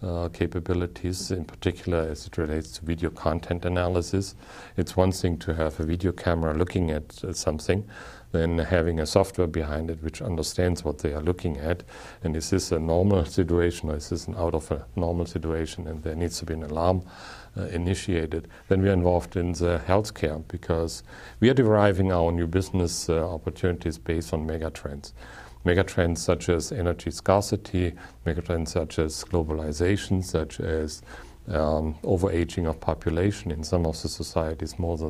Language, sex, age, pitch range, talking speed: English, male, 50-69, 80-90 Hz, 170 wpm